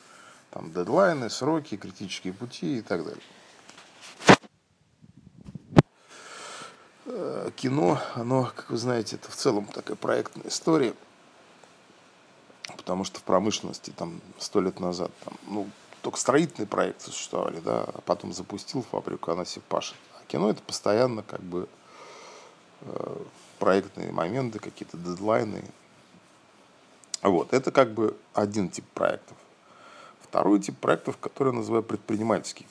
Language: Russian